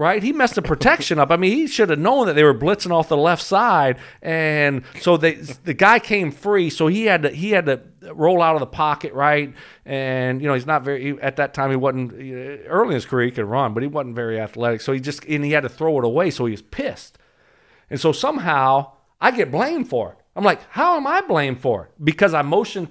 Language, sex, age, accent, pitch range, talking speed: English, male, 40-59, American, 140-190 Hz, 255 wpm